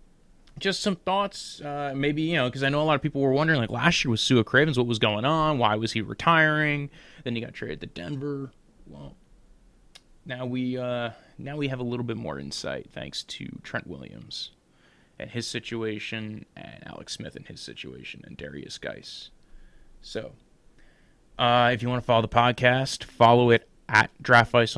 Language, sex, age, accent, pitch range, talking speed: English, male, 20-39, American, 110-145 Hz, 185 wpm